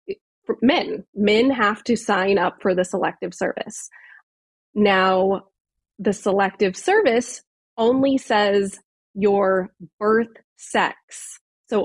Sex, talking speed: female, 100 wpm